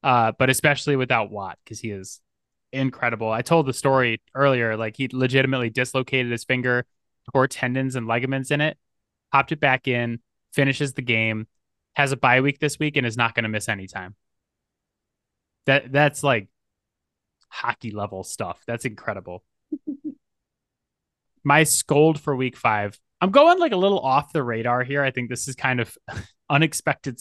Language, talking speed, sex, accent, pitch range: English, 165 wpm, male, American, 115-150 Hz